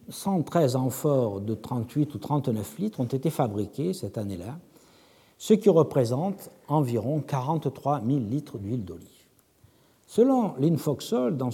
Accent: French